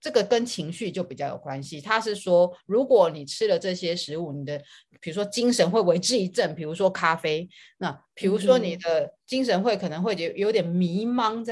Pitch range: 165-215 Hz